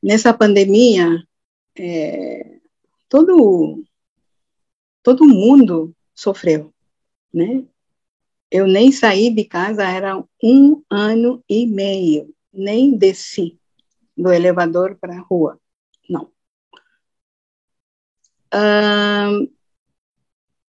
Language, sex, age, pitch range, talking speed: Portuguese, female, 50-69, 180-245 Hz, 75 wpm